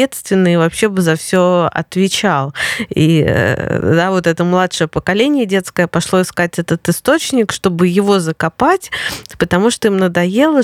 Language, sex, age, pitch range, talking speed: Russian, female, 20-39, 180-220 Hz, 135 wpm